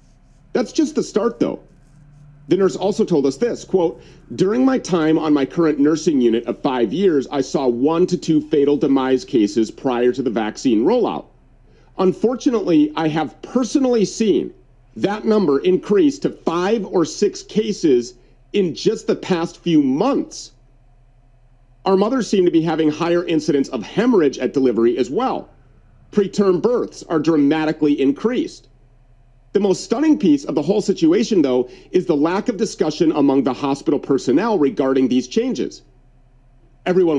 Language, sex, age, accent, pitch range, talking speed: English, male, 40-59, American, 130-200 Hz, 155 wpm